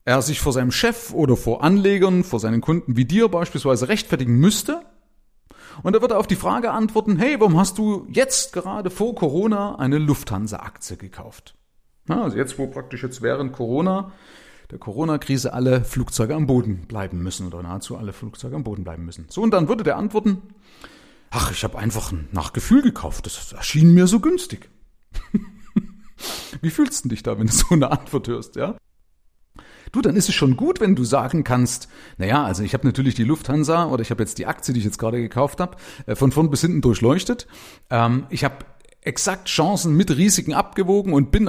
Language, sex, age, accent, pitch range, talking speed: German, male, 40-59, German, 110-185 Hz, 185 wpm